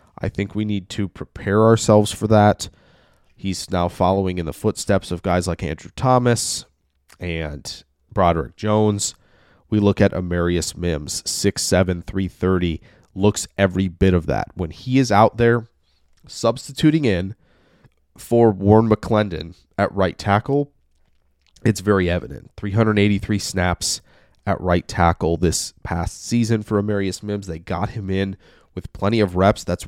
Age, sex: 20-39, male